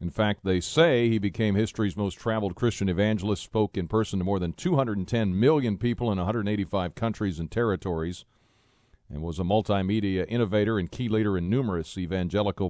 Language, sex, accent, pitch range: English, male, American, 90-115 Hz